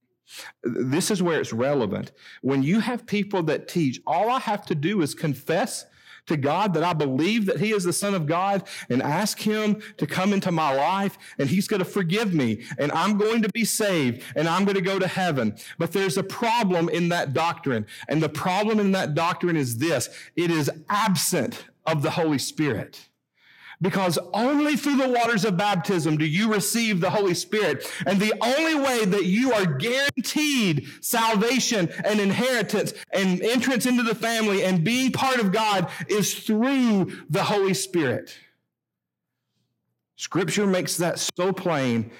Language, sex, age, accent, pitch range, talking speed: English, male, 40-59, American, 150-205 Hz, 175 wpm